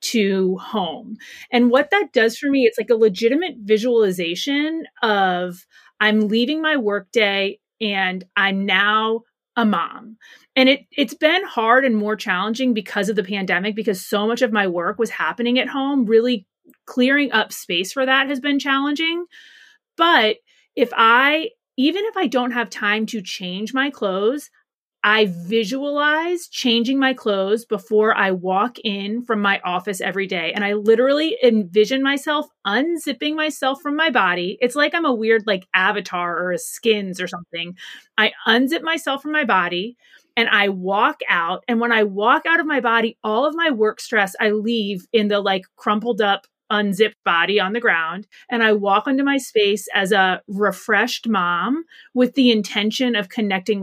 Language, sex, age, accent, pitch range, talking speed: English, female, 30-49, American, 205-265 Hz, 170 wpm